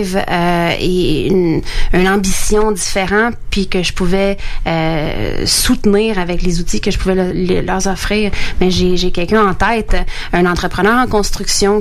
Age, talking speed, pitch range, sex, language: 30-49, 165 wpm, 180-215 Hz, female, French